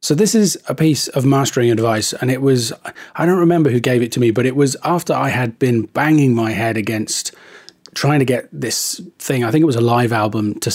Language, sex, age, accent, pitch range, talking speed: English, male, 30-49, British, 120-150 Hz, 240 wpm